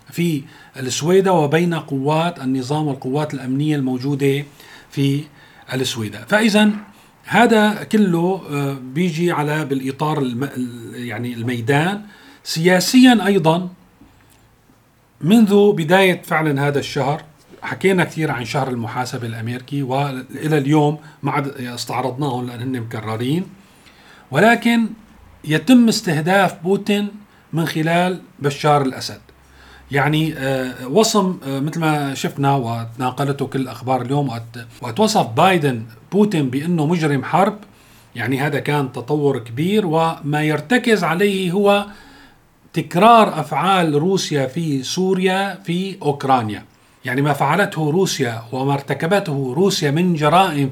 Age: 40-59